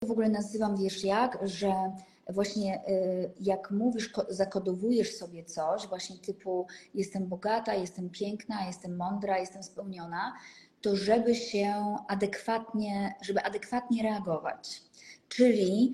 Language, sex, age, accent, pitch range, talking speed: Polish, female, 20-39, native, 195-240 Hz, 115 wpm